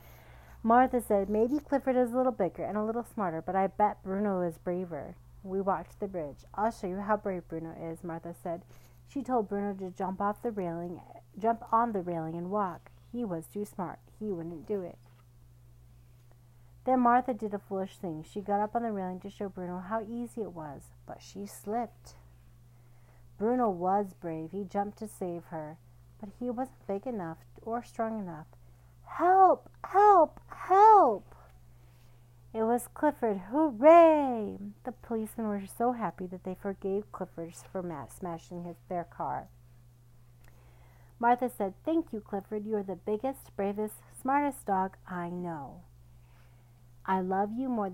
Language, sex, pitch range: English, female, 150-215 Hz